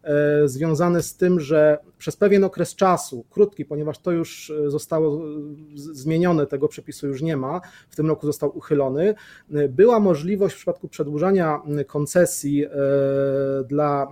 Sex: male